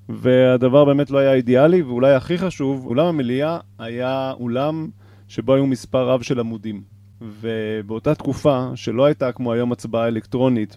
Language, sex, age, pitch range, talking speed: Hebrew, male, 30-49, 115-135 Hz, 145 wpm